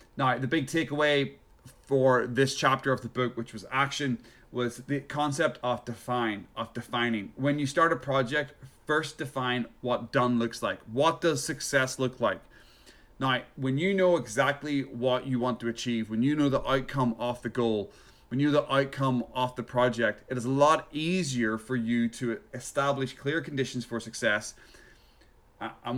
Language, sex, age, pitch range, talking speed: English, male, 30-49, 120-140 Hz, 175 wpm